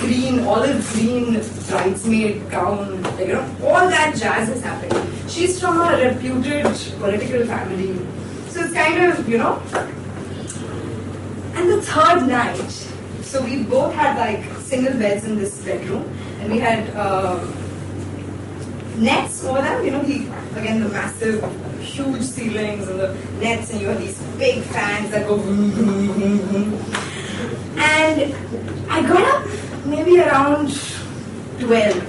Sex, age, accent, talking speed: female, 20-39, native, 135 wpm